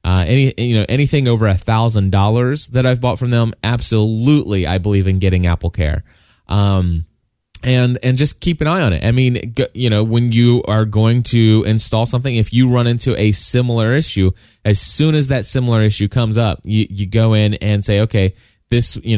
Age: 20-39